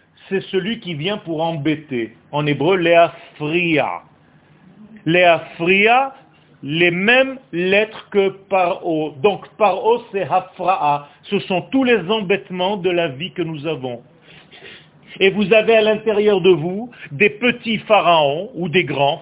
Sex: male